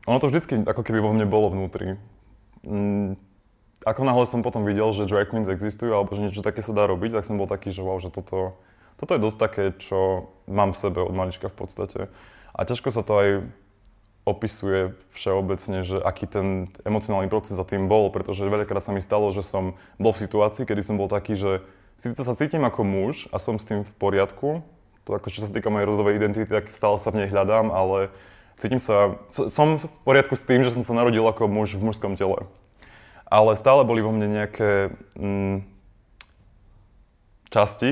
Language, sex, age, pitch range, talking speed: Slovak, male, 20-39, 95-110 Hz, 200 wpm